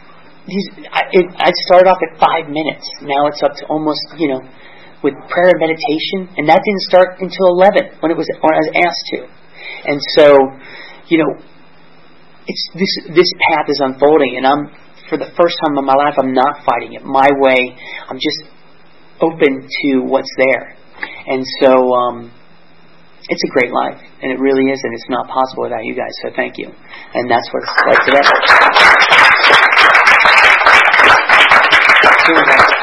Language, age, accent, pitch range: English, 30-49, American, 130-150 Hz